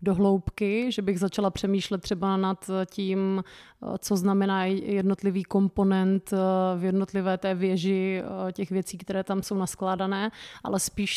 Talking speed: 125 wpm